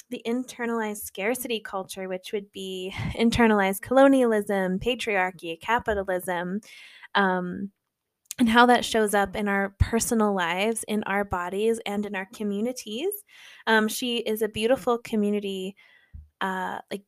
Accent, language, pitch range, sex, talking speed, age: American, English, 200-245 Hz, female, 125 wpm, 10-29